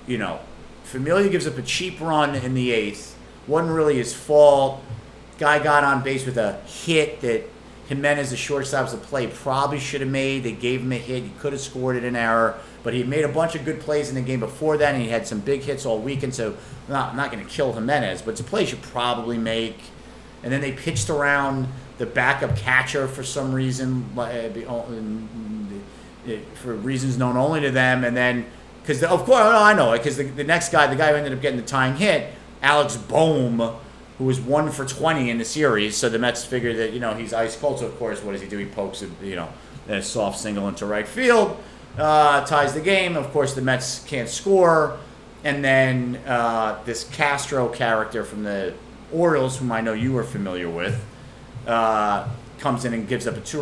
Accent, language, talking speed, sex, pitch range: American, English, 215 wpm, male, 115-150 Hz